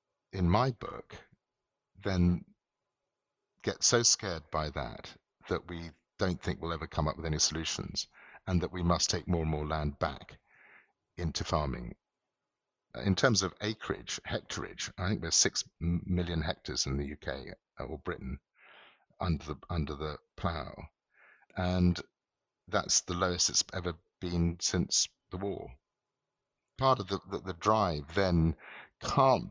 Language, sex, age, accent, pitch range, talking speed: English, male, 50-69, British, 80-95 Hz, 145 wpm